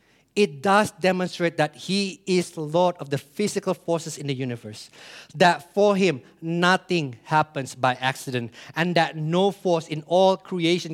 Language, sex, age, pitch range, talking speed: English, male, 50-69, 140-190 Hz, 155 wpm